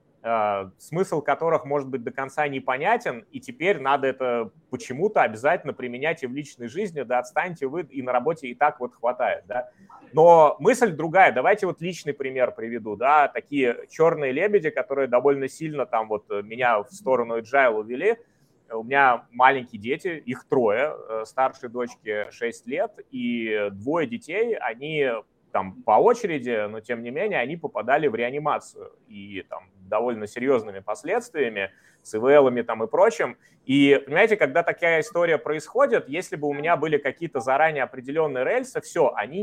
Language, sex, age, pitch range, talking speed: Russian, male, 30-49, 125-165 Hz, 155 wpm